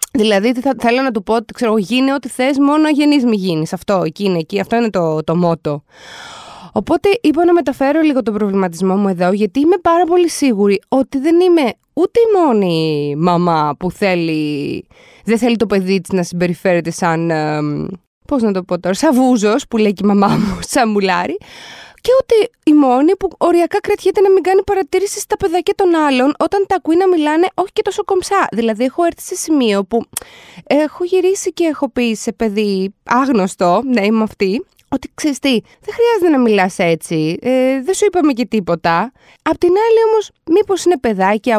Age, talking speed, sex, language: 20-39, 190 wpm, female, Greek